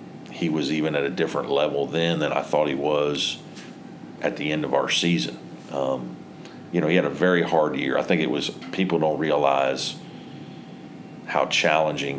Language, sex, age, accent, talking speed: English, male, 40-59, American, 180 wpm